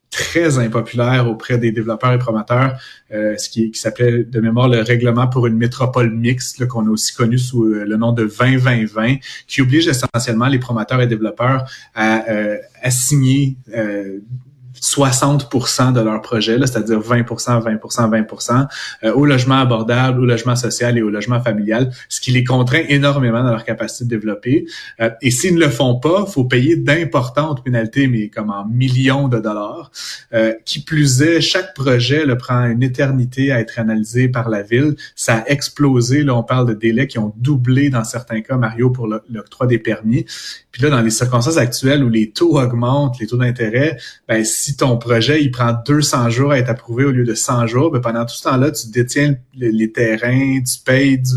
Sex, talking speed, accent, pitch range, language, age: male, 195 wpm, Canadian, 115-135 Hz, French, 30-49